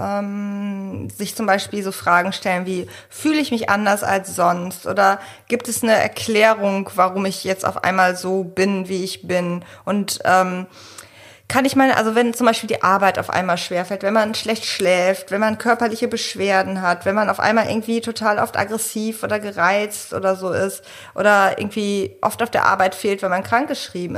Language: German